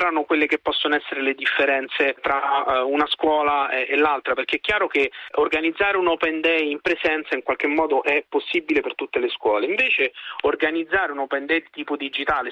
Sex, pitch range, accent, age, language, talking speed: male, 140-195 Hz, native, 30-49, Italian, 180 wpm